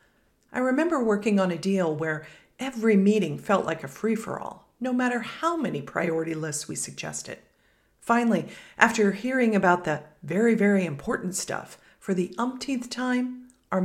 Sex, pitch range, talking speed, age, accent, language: female, 180-235 Hz, 150 wpm, 40-59, American, English